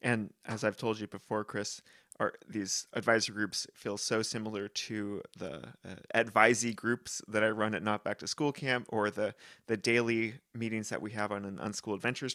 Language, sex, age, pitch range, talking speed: English, male, 30-49, 105-125 Hz, 195 wpm